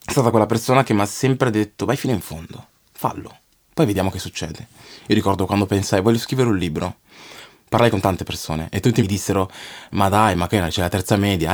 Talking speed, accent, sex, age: 220 wpm, native, male, 20-39